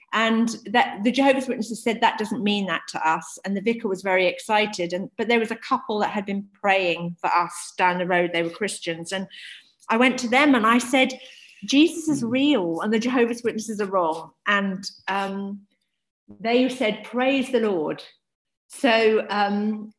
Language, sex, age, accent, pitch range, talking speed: English, female, 40-59, British, 190-240 Hz, 185 wpm